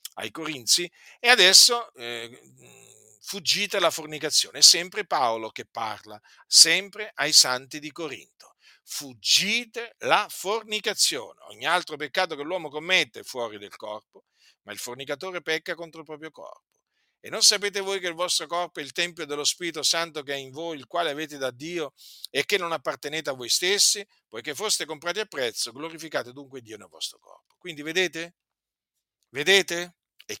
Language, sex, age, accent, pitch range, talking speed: Italian, male, 50-69, native, 125-175 Hz, 165 wpm